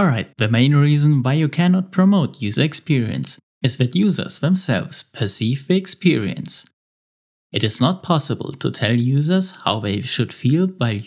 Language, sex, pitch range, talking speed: English, male, 115-175 Hz, 155 wpm